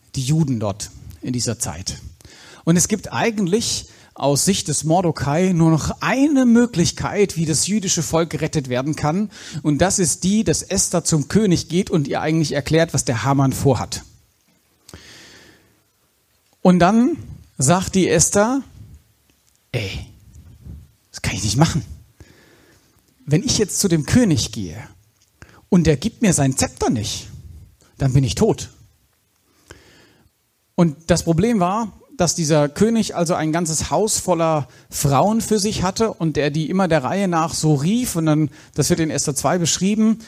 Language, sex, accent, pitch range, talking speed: German, male, German, 140-185 Hz, 155 wpm